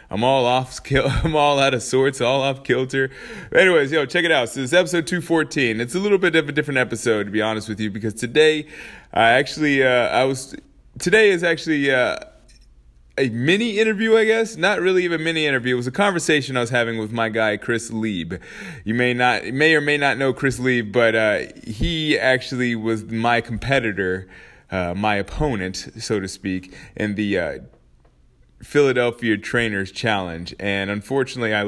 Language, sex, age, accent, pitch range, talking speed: English, male, 20-39, American, 110-140 Hz, 190 wpm